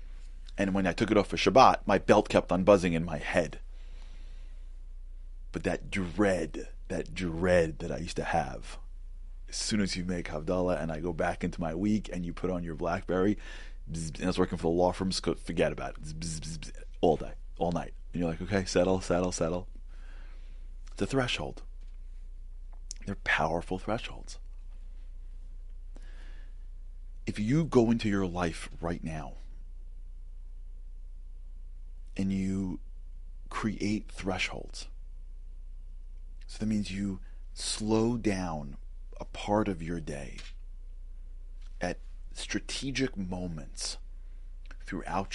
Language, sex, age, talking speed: English, male, 30-49, 130 wpm